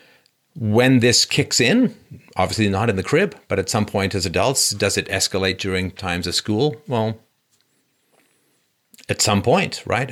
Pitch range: 100-125 Hz